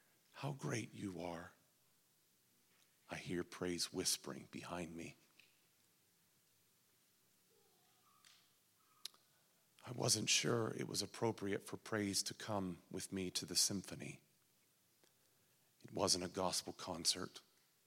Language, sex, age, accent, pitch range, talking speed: English, male, 40-59, American, 95-145 Hz, 100 wpm